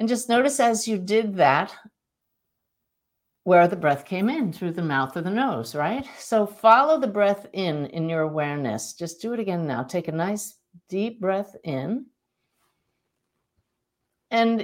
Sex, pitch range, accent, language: female, 175-225 Hz, American, English